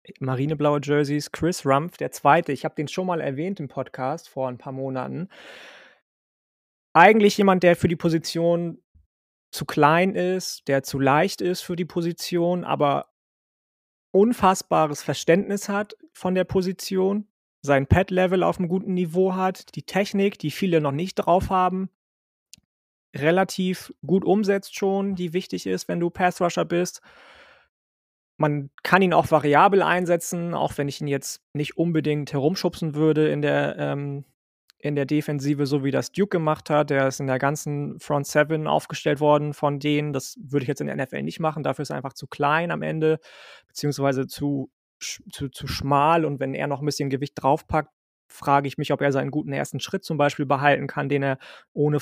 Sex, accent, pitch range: male, German, 140-180 Hz